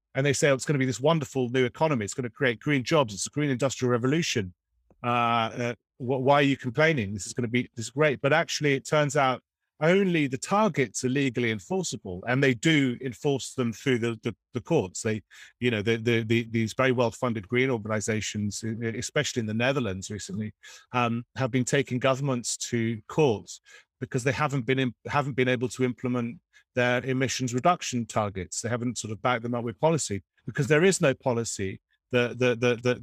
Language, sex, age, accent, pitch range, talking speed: English, male, 40-59, British, 110-135 Hz, 200 wpm